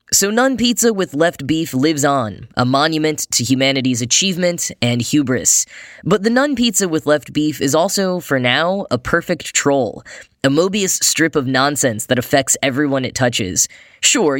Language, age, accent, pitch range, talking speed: English, 10-29, American, 125-170 Hz, 165 wpm